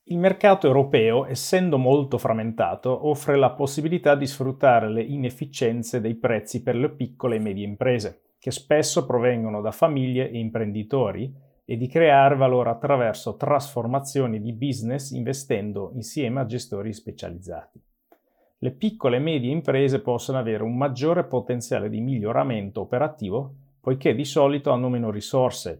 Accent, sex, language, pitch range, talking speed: native, male, Italian, 110-140 Hz, 140 wpm